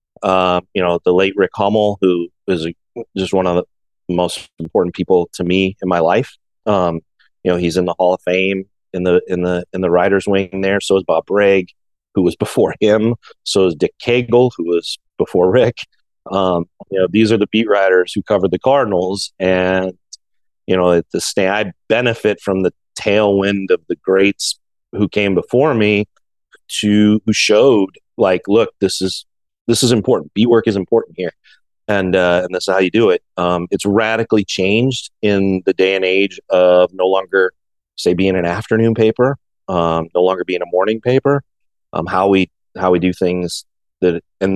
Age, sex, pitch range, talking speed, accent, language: 30-49, male, 90-105 Hz, 195 wpm, American, English